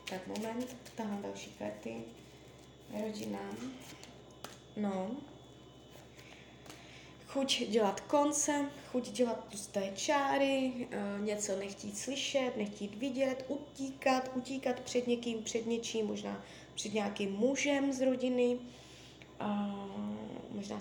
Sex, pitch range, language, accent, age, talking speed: female, 200-255 Hz, Czech, native, 20-39, 90 wpm